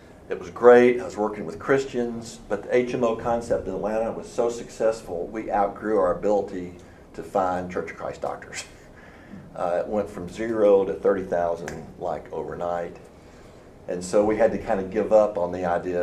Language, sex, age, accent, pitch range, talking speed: English, male, 50-69, American, 85-115 Hz, 180 wpm